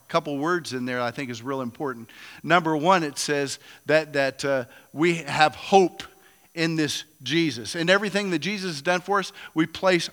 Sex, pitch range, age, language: male, 150-190 Hz, 50-69, English